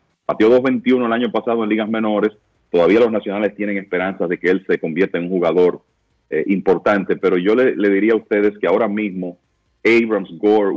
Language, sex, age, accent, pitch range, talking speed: Spanish, male, 40-59, Venezuelan, 95-125 Hz, 195 wpm